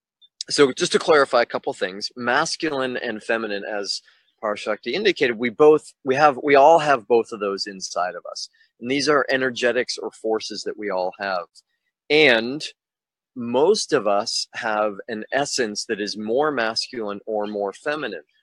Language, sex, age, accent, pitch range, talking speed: English, male, 30-49, American, 105-135 Hz, 165 wpm